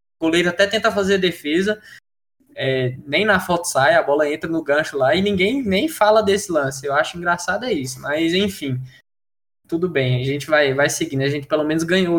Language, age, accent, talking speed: Portuguese, 10-29, Brazilian, 205 wpm